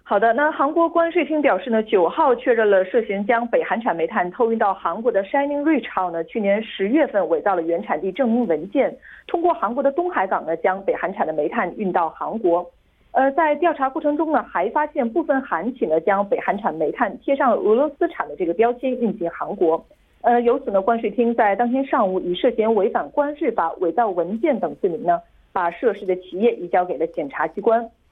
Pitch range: 195-290 Hz